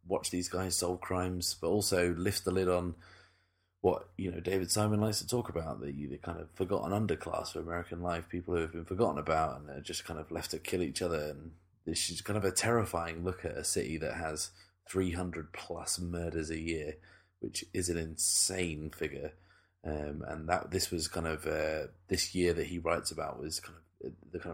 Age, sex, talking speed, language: 20-39, male, 215 wpm, English